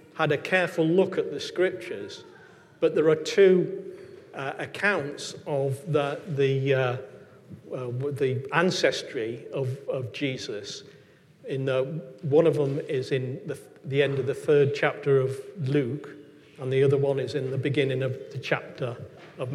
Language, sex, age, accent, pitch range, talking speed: English, male, 40-59, British, 135-180 Hz, 155 wpm